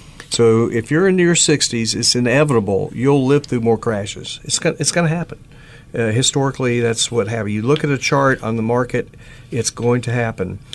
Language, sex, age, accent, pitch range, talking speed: English, male, 50-69, American, 115-150 Hz, 190 wpm